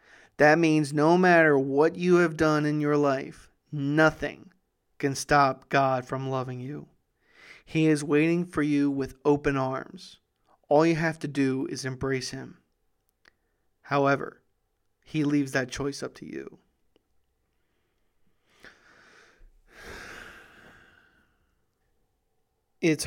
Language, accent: English, American